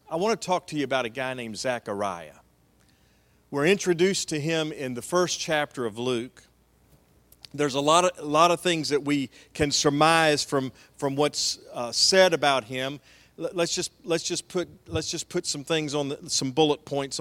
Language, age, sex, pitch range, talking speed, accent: English, 40-59, male, 130-180 Hz, 190 wpm, American